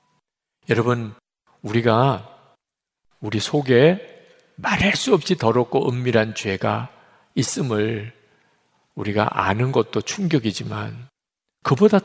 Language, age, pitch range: Korean, 50-69, 125-195 Hz